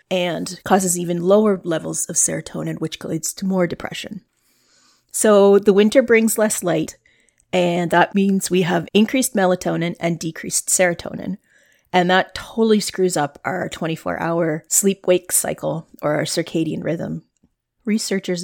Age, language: 30-49, English